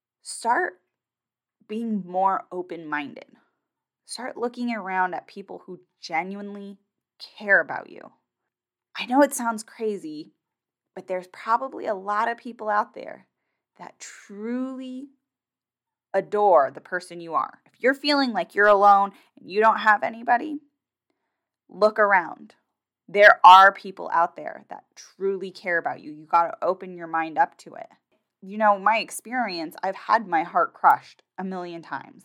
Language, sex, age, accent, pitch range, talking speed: English, female, 10-29, American, 180-255 Hz, 145 wpm